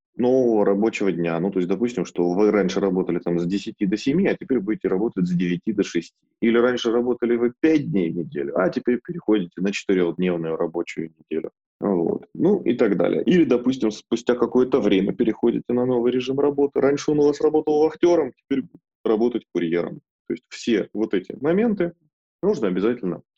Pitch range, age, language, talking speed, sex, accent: 95-140 Hz, 20-39, Russian, 180 wpm, male, native